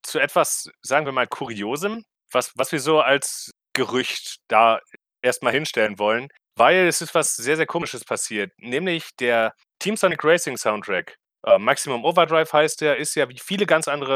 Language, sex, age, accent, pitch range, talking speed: German, male, 30-49, German, 125-170 Hz, 175 wpm